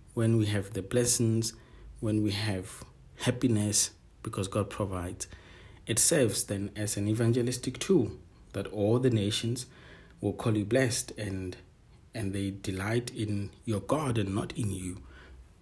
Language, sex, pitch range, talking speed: English, male, 95-120 Hz, 145 wpm